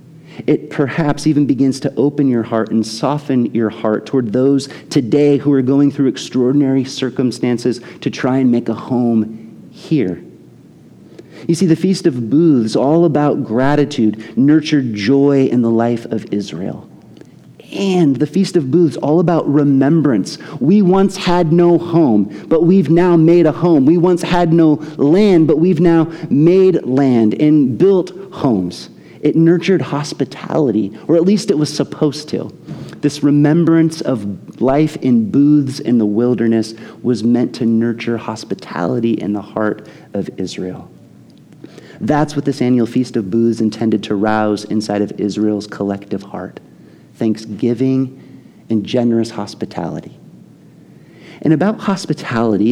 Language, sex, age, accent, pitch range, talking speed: English, male, 30-49, American, 115-155 Hz, 145 wpm